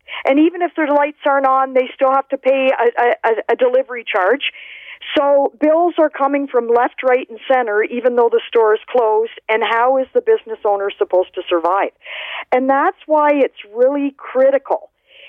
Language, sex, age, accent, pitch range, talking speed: English, female, 50-69, American, 245-300 Hz, 185 wpm